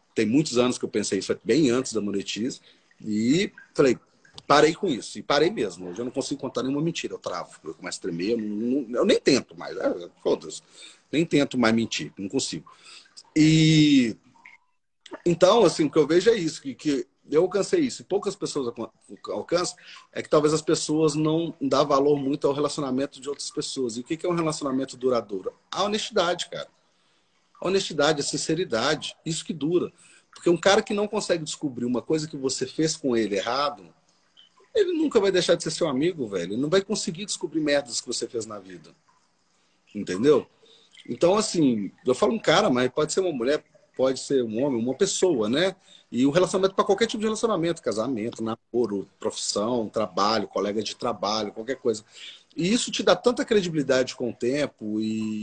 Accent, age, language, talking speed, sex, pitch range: Brazilian, 40-59, Portuguese, 185 wpm, male, 125-185 Hz